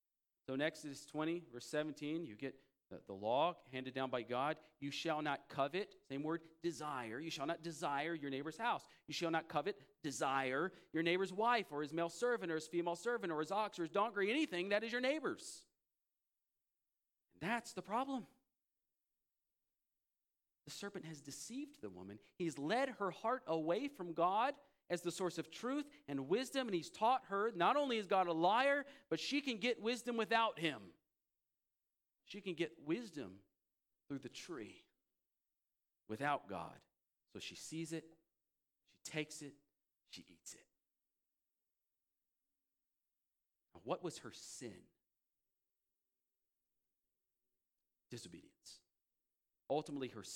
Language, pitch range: English, 145-210 Hz